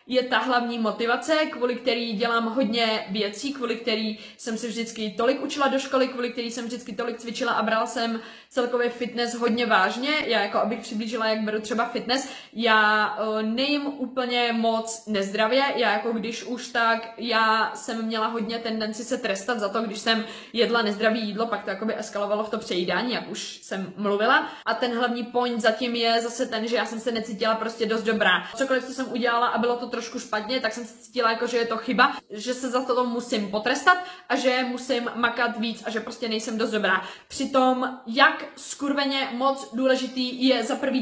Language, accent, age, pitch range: Czech, native, 20-39, 225-260 Hz